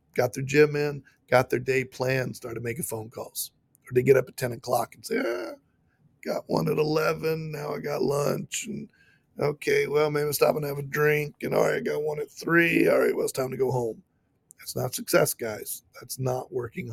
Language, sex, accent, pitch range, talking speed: English, male, American, 120-150 Hz, 225 wpm